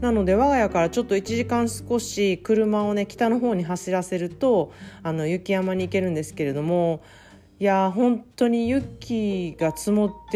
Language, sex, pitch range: Japanese, female, 160-200 Hz